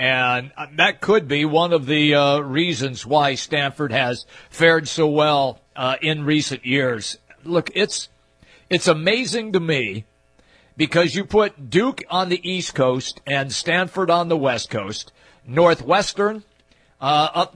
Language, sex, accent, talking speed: English, male, American, 145 wpm